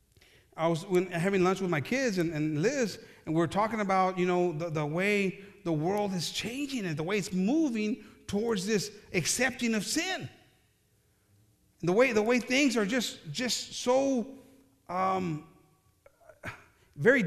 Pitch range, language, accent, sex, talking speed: 170-230 Hz, English, American, male, 155 wpm